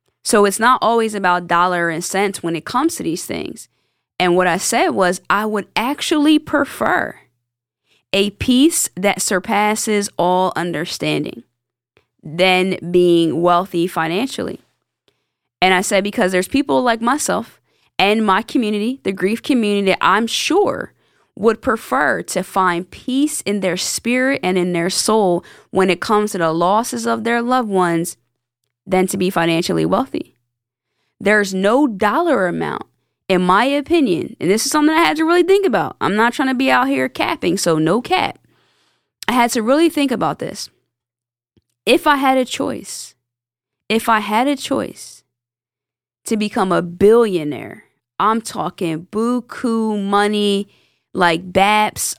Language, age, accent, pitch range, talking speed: English, 20-39, American, 165-230 Hz, 150 wpm